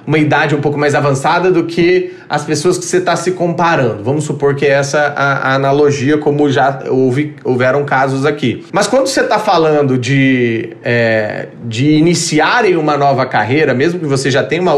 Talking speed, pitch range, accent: 185 wpm, 140-180 Hz, Brazilian